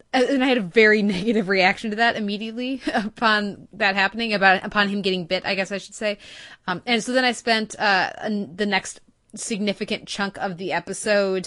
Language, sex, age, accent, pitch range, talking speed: English, female, 20-39, American, 185-215 Hz, 195 wpm